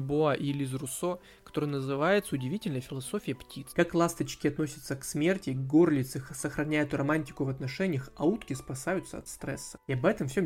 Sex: male